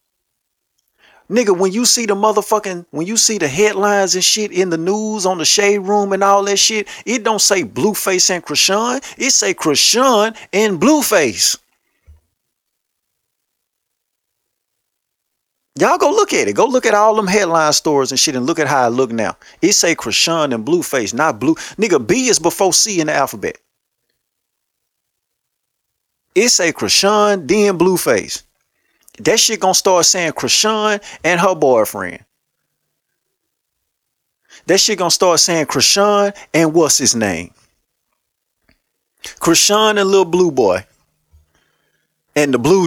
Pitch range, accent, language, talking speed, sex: 160-215 Hz, American, English, 150 wpm, male